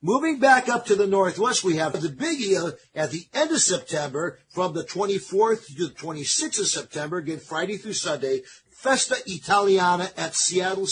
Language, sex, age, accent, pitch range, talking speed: English, male, 50-69, American, 155-210 Hz, 175 wpm